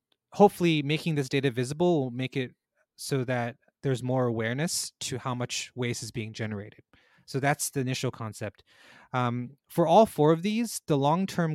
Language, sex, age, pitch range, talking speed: English, male, 20-39, 120-150 Hz, 170 wpm